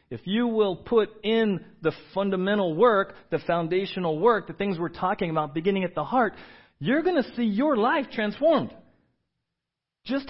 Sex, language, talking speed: male, English, 165 wpm